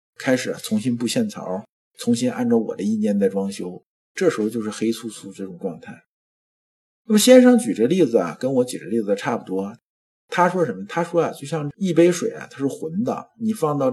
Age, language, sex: 50-69, Chinese, male